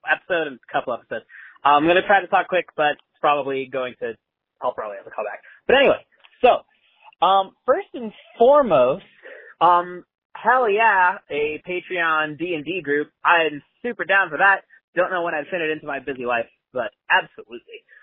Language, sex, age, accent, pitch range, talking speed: English, male, 30-49, American, 130-180 Hz, 185 wpm